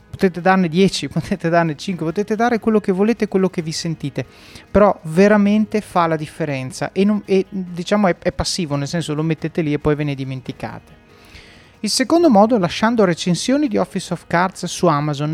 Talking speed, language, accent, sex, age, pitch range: 190 wpm, Italian, native, male, 30-49, 155-215 Hz